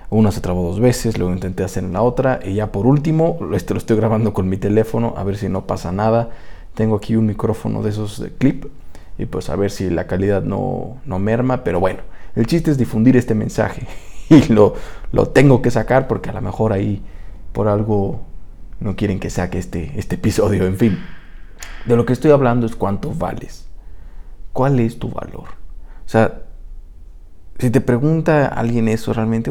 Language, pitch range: English, 90-125 Hz